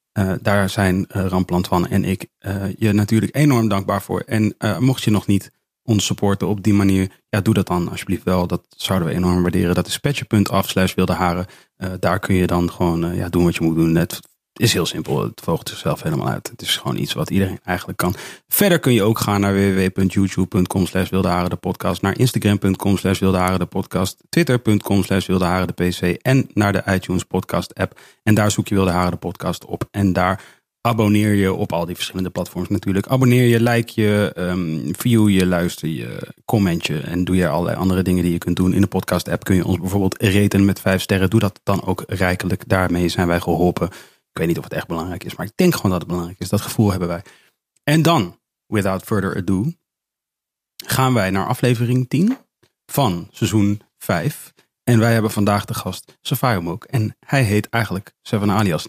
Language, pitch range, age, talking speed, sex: Dutch, 90-110 Hz, 30-49, 210 wpm, male